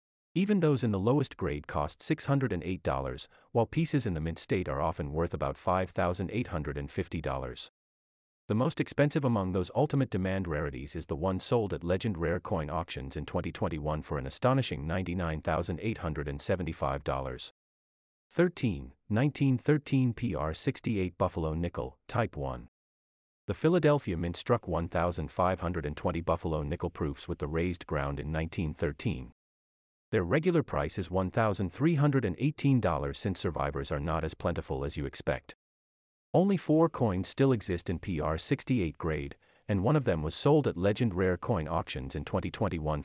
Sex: male